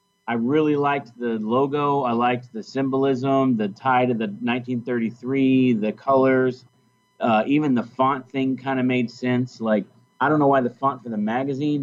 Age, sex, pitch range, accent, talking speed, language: 30-49, male, 120-145 Hz, American, 180 wpm, English